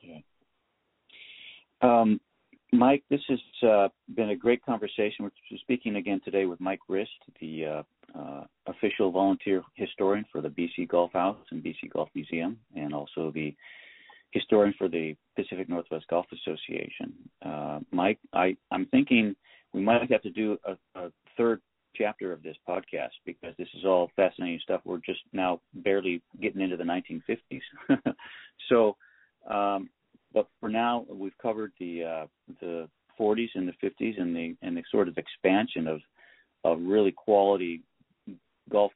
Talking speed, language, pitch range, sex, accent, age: 150 wpm, English, 85-110 Hz, male, American, 40-59